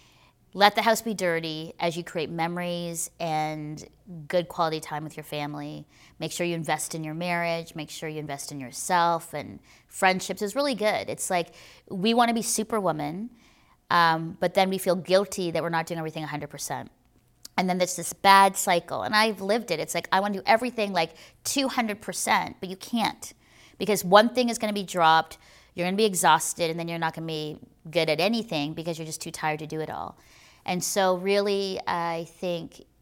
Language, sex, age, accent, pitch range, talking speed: English, female, 30-49, American, 160-190 Hz, 195 wpm